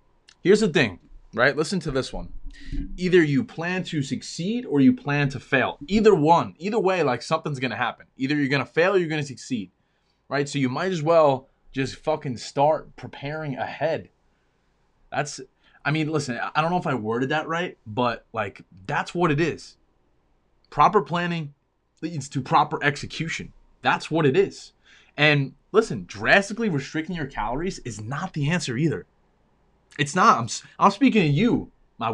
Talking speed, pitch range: 170 wpm, 135-175 Hz